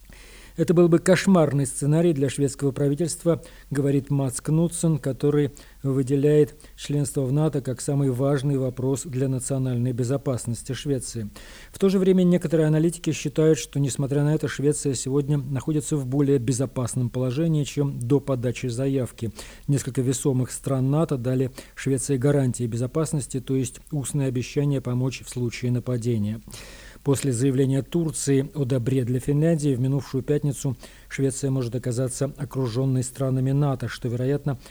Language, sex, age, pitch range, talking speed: Russian, male, 40-59, 125-145 Hz, 140 wpm